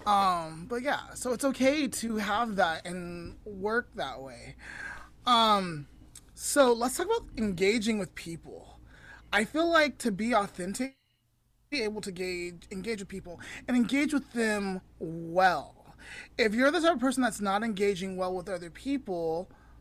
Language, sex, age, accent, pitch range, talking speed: English, male, 20-39, American, 175-245 Hz, 160 wpm